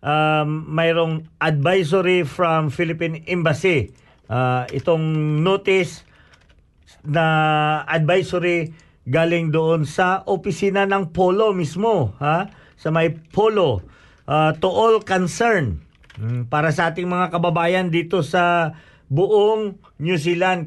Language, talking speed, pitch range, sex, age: Filipino, 105 wpm, 155-190 Hz, male, 50-69